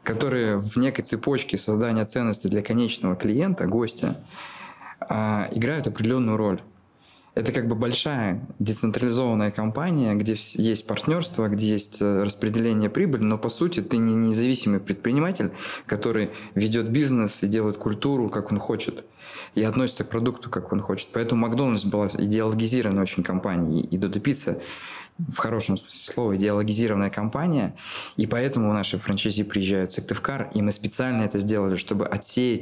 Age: 20-39